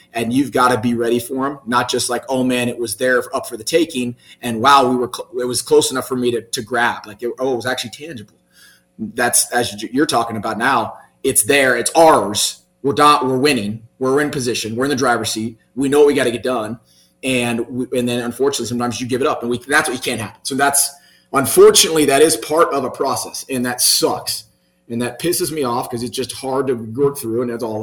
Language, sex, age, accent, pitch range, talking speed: English, male, 30-49, American, 120-140 Hz, 250 wpm